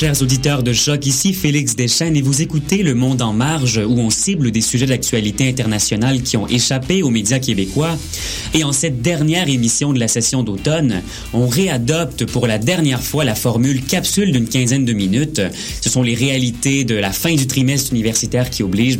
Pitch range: 115-150 Hz